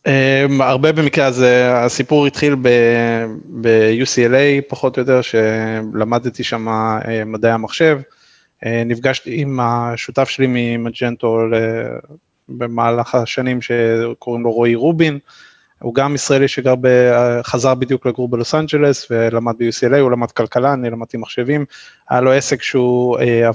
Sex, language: male, Hebrew